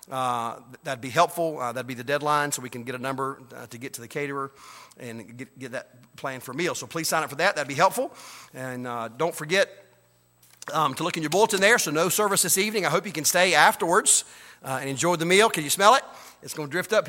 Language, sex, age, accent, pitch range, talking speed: English, male, 40-59, American, 135-175 Hz, 255 wpm